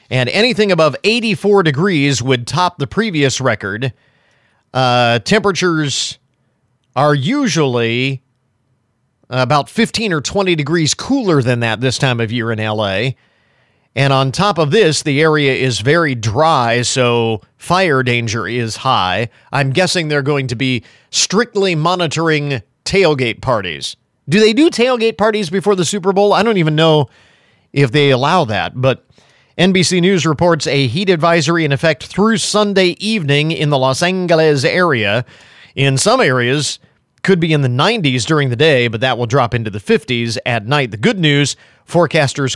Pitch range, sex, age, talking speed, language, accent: 120-175 Hz, male, 40-59, 155 wpm, English, American